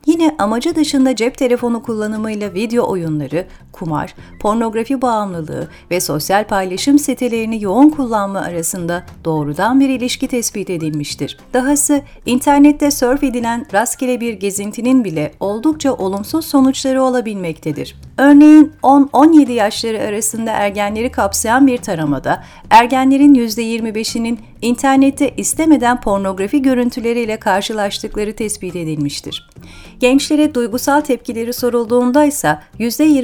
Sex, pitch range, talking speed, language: female, 200-260 Hz, 105 wpm, Turkish